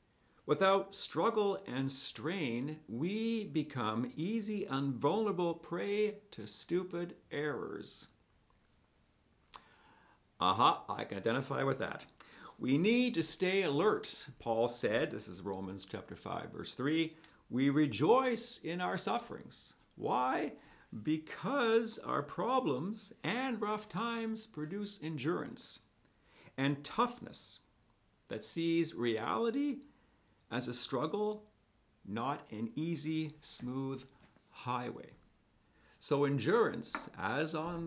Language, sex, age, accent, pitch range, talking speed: English, male, 50-69, American, 115-190 Hz, 105 wpm